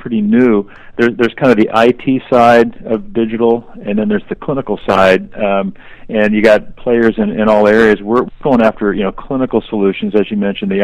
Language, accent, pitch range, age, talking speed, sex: English, American, 100-115 Hz, 40-59, 205 wpm, male